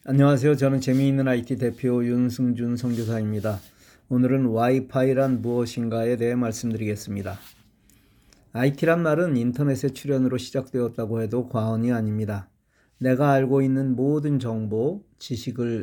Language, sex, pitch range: Korean, male, 120-140 Hz